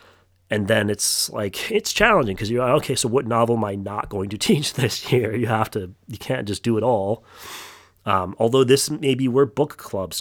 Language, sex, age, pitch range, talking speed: English, male, 30-49, 100-120 Hz, 225 wpm